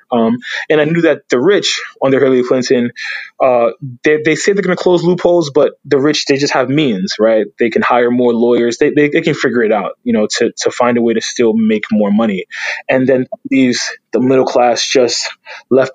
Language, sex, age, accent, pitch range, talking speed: English, male, 20-39, American, 120-160 Hz, 220 wpm